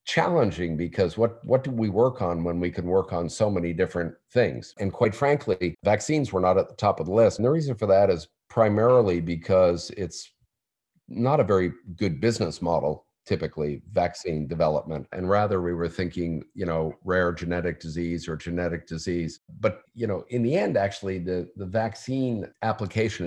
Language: English